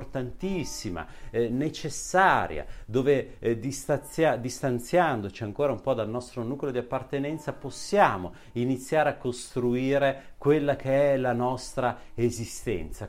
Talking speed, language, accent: 110 wpm, Italian, native